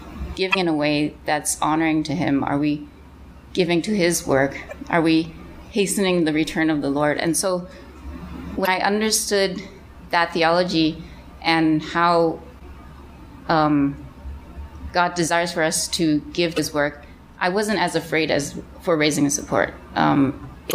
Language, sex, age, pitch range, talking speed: English, female, 30-49, 145-190 Hz, 150 wpm